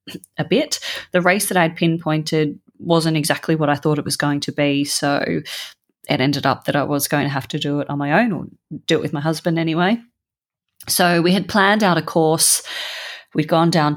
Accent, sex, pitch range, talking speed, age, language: Australian, female, 145-175 Hz, 215 wpm, 30-49, English